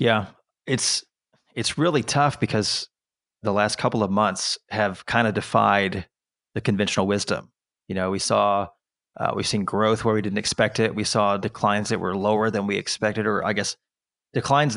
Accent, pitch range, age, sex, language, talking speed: American, 105-120 Hz, 30-49, male, English, 180 wpm